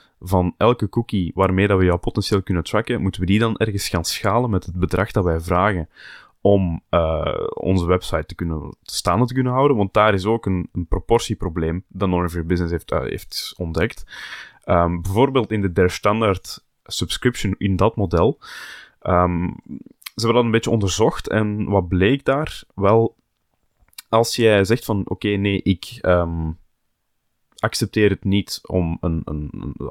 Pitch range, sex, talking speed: 90-110 Hz, male, 170 wpm